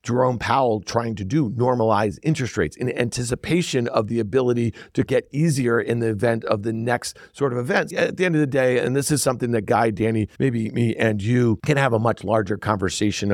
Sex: male